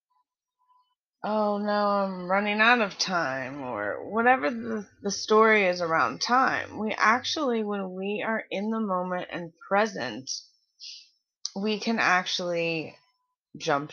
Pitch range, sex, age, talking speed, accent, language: 175-250 Hz, female, 20-39, 125 wpm, American, English